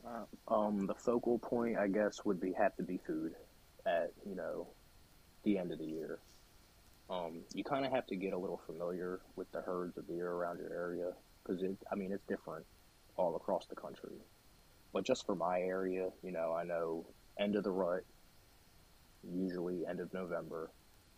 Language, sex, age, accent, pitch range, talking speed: English, male, 20-39, American, 85-100 Hz, 180 wpm